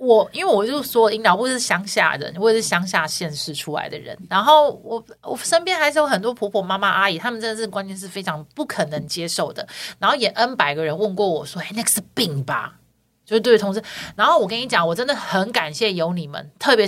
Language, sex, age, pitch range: Chinese, female, 30-49, 180-255 Hz